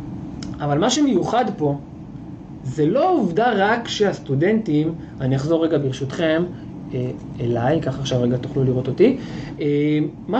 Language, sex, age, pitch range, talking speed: Hebrew, male, 20-39, 140-185 Hz, 120 wpm